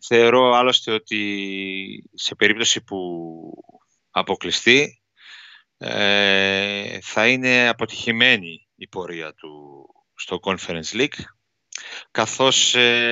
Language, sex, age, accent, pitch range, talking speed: Greek, male, 30-49, Spanish, 105-130 Hz, 80 wpm